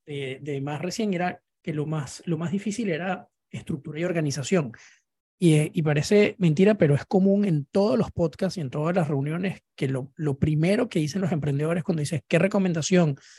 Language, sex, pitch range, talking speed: Spanish, male, 145-180 Hz, 195 wpm